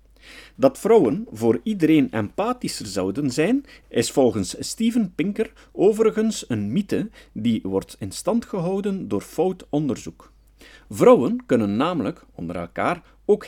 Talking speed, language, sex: 125 wpm, Dutch, male